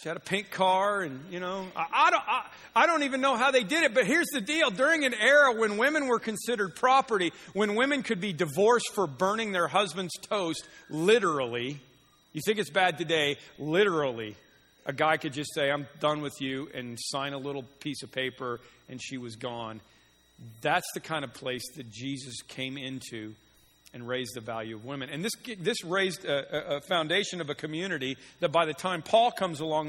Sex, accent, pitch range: male, American, 125-175 Hz